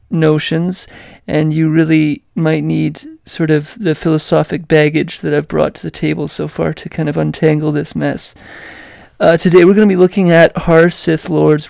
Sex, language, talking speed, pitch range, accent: male, English, 185 wpm, 150-180 Hz, American